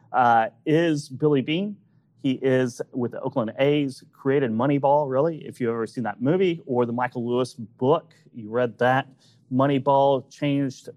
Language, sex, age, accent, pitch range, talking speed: English, male, 30-49, American, 125-150 Hz, 155 wpm